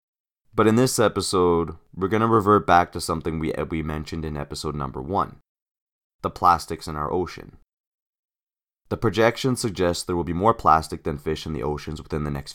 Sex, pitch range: male, 80-100 Hz